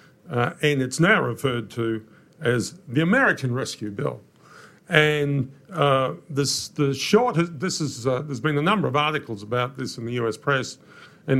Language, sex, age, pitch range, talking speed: English, male, 50-69, 120-155 Hz, 170 wpm